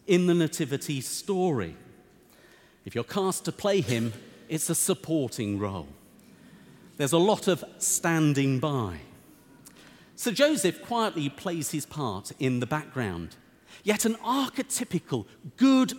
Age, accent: 40-59, British